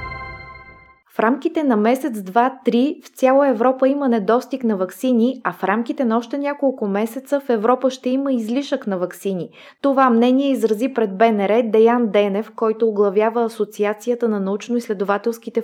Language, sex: Bulgarian, female